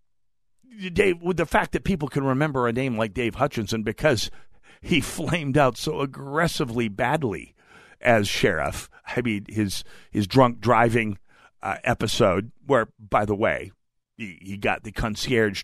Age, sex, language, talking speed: 50-69, male, English, 150 wpm